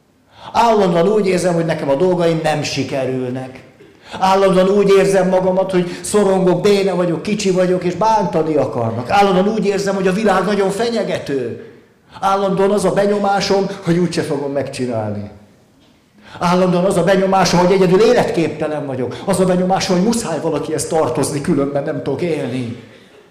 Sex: male